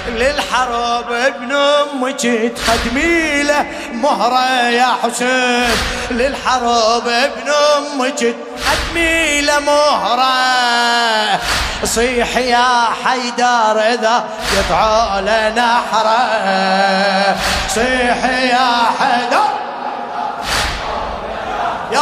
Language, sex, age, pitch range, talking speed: Arabic, male, 20-39, 225-255 Hz, 65 wpm